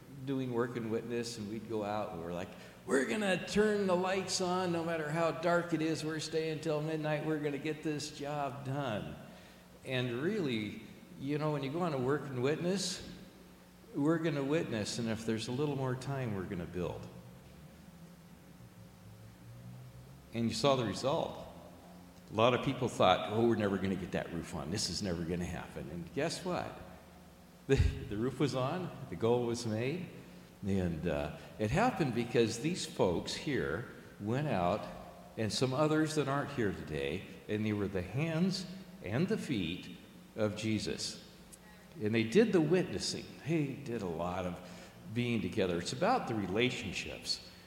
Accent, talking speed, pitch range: American, 170 wpm, 100-160 Hz